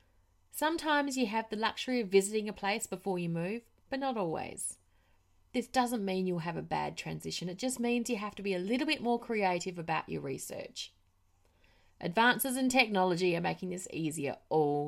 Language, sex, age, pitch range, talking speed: English, female, 30-49, 155-225 Hz, 185 wpm